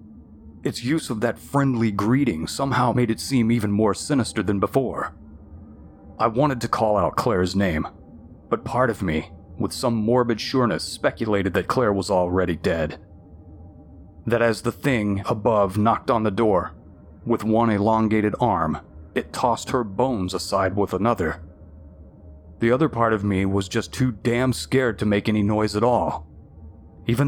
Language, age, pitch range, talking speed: English, 30-49, 85-120 Hz, 160 wpm